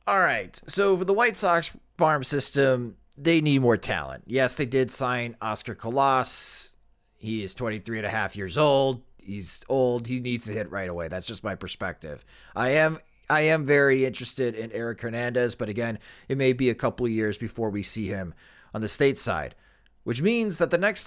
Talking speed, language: 195 wpm, English